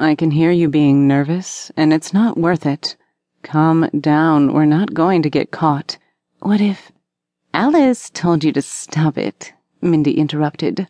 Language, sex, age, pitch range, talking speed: English, female, 30-49, 160-200 Hz, 160 wpm